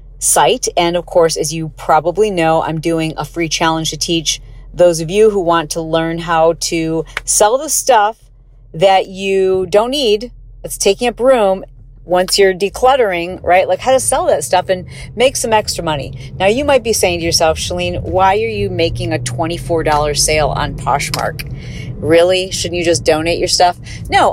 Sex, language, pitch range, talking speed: female, English, 155-210 Hz, 185 wpm